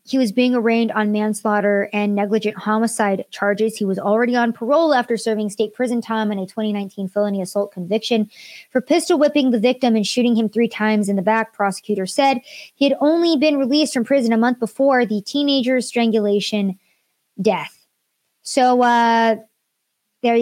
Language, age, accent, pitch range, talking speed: English, 20-39, American, 205-250 Hz, 170 wpm